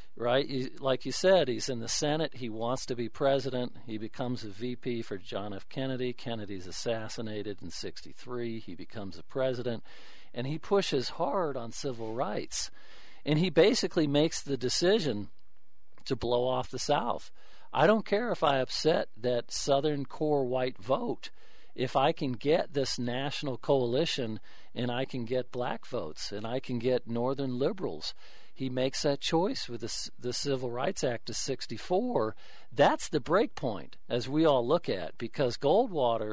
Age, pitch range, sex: 50-69, 120-150 Hz, male